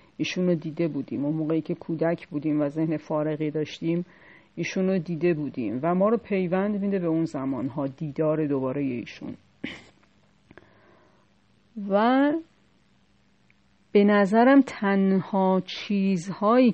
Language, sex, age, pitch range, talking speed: Persian, female, 40-59, 155-190 Hz, 115 wpm